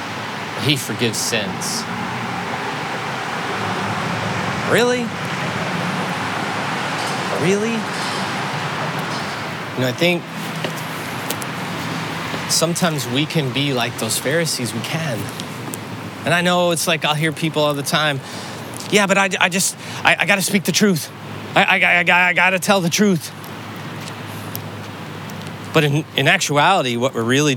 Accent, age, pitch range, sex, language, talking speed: American, 30-49, 140-180 Hz, male, English, 125 wpm